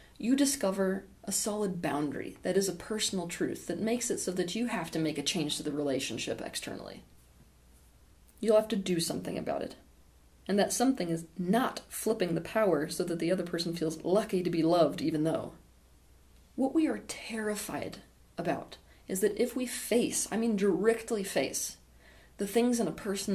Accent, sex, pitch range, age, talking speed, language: American, female, 160-200 Hz, 30-49, 180 wpm, English